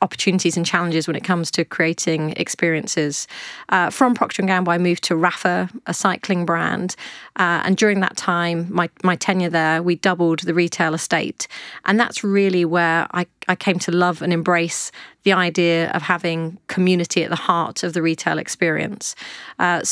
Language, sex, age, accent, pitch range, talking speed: English, female, 30-49, British, 170-190 Hz, 180 wpm